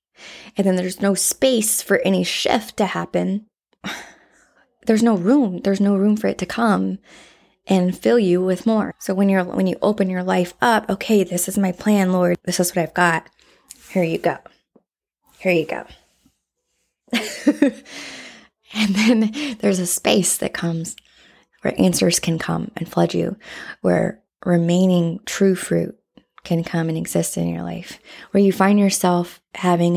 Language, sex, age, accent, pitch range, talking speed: English, female, 20-39, American, 170-200 Hz, 160 wpm